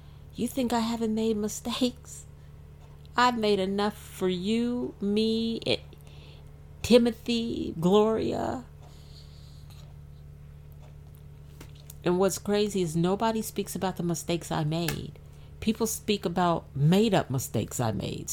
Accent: American